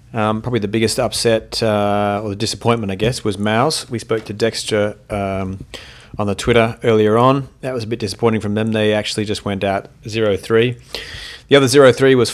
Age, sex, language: 30-49, male, English